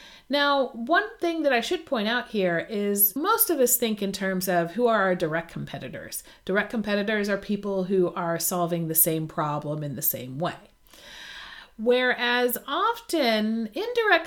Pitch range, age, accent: 175-245 Hz, 40-59, American